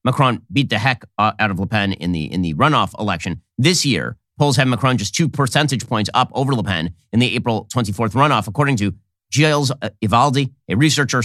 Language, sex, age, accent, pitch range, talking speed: English, male, 30-49, American, 105-135 Hz, 195 wpm